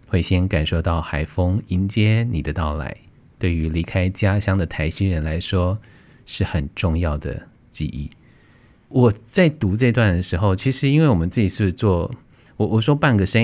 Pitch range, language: 85-105 Hz, Chinese